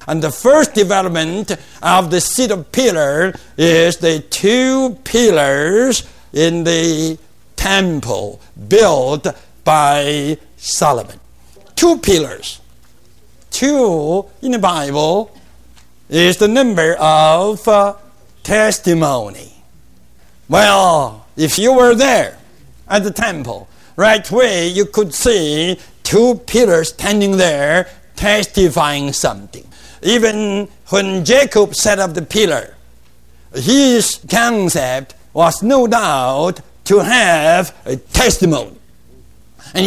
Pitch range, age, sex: 155-225 Hz, 60-79, male